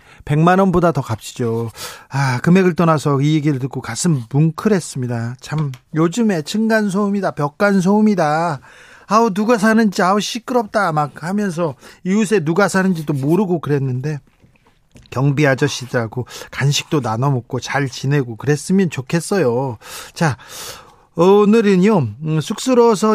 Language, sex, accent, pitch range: Korean, male, native, 140-195 Hz